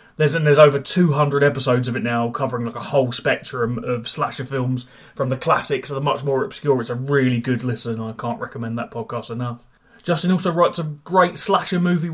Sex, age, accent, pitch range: male, 20-39, British, 130-155 Hz